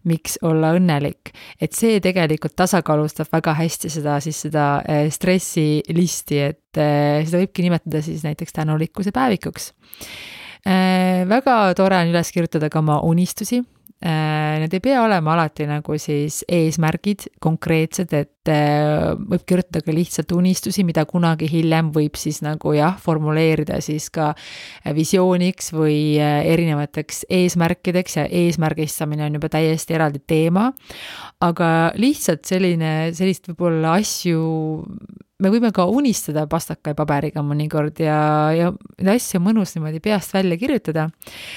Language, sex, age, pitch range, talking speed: English, female, 30-49, 155-185 Hz, 125 wpm